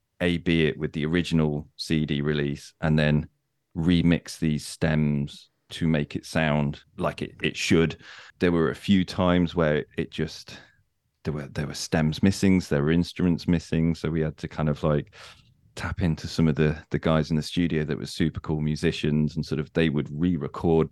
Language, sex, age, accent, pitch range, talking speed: English, male, 30-49, British, 75-85 Hz, 190 wpm